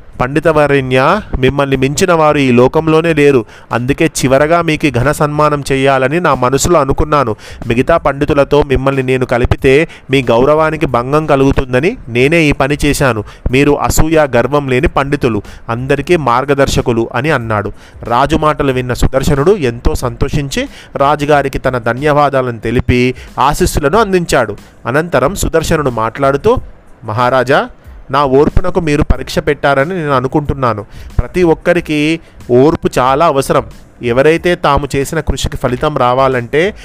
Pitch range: 125-160 Hz